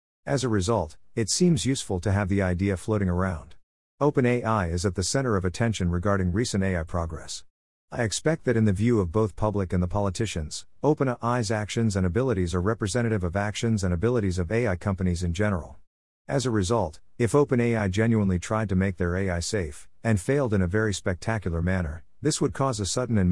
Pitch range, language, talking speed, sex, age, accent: 90-115 Hz, English, 195 wpm, male, 50-69, American